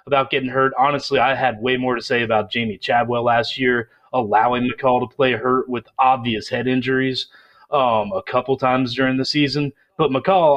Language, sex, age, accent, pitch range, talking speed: English, male, 30-49, American, 115-130 Hz, 185 wpm